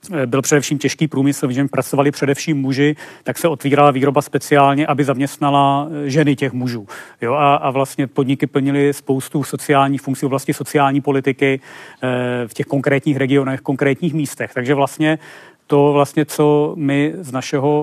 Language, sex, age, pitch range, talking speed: Czech, male, 40-59, 140-160 Hz, 150 wpm